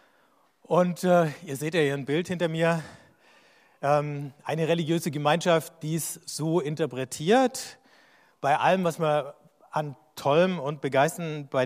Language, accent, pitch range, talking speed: German, German, 135-165 Hz, 140 wpm